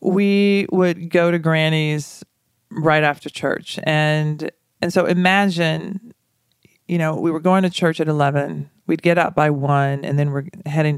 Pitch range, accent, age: 150-210 Hz, American, 40-59